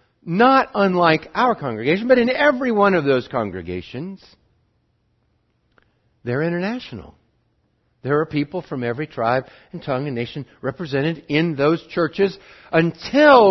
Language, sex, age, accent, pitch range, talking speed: English, male, 50-69, American, 120-195 Hz, 125 wpm